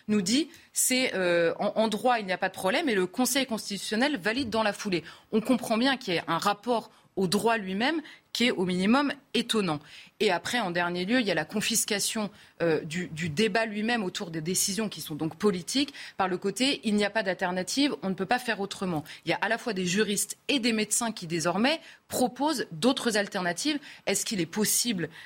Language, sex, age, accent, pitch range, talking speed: French, female, 30-49, French, 180-235 Hz, 220 wpm